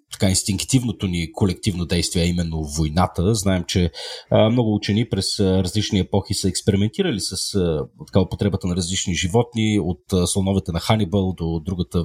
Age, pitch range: 40-59, 95-115 Hz